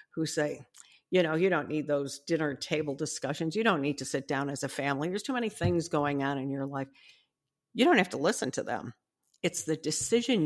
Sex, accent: female, American